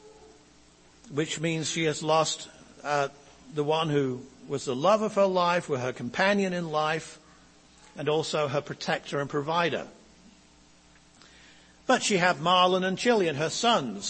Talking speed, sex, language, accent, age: 145 wpm, male, English, British, 60-79